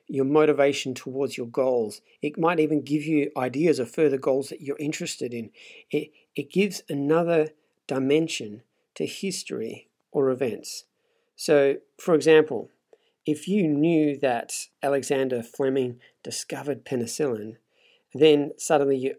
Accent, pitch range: Australian, 130-155 Hz